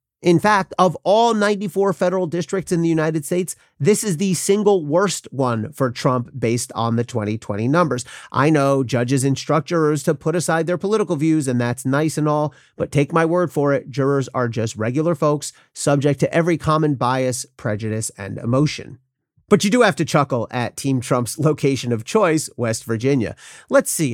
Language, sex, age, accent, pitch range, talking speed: English, male, 40-59, American, 125-180 Hz, 185 wpm